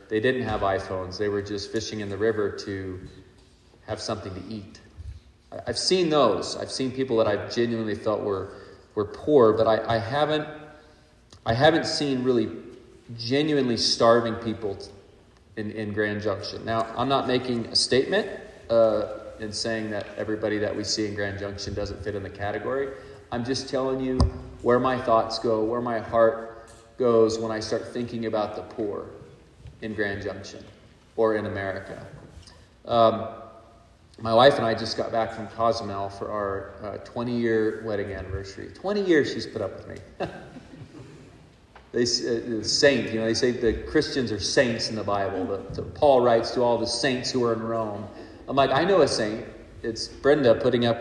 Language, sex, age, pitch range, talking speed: English, male, 40-59, 105-120 Hz, 175 wpm